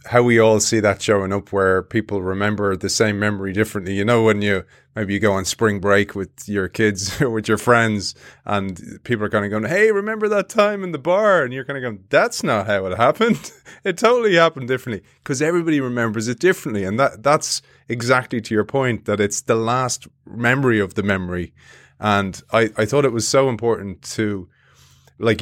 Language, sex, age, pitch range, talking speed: English, male, 30-49, 100-125 Hz, 210 wpm